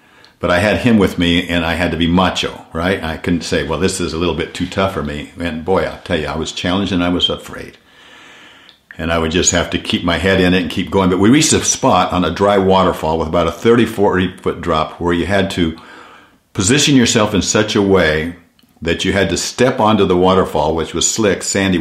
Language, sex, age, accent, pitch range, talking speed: English, male, 50-69, American, 85-95 Hz, 250 wpm